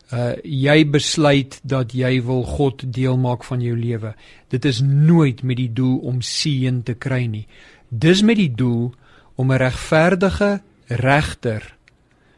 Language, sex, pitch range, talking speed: English, male, 125-150 Hz, 155 wpm